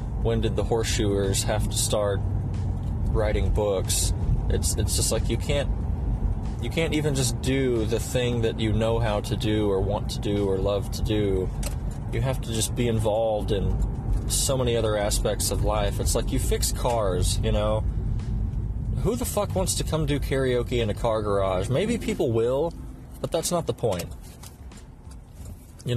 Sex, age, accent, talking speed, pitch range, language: male, 20-39, American, 180 wpm, 100-120 Hz, English